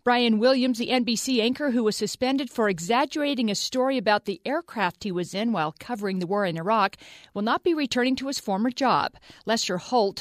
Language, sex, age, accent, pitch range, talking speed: English, female, 50-69, American, 200-255 Hz, 200 wpm